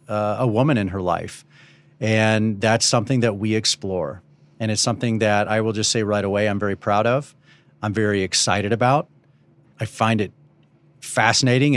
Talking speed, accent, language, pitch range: 175 wpm, American, English, 110-140 Hz